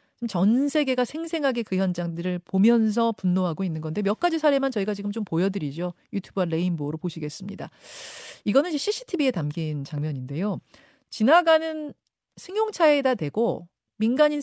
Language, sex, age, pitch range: Korean, female, 40-59, 165-270 Hz